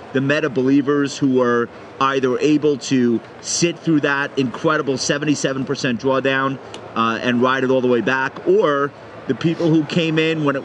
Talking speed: 170 wpm